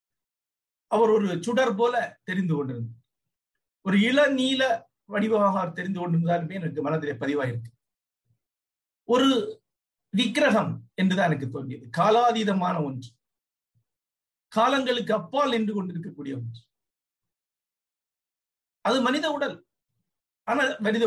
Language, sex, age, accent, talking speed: Tamil, male, 50-69, native, 90 wpm